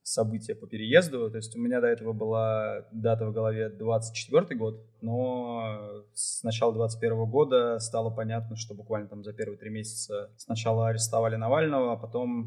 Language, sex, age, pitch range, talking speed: Russian, male, 20-39, 110-120 Hz, 165 wpm